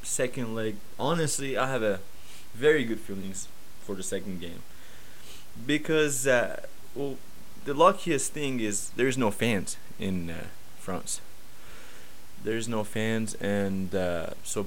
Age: 20-39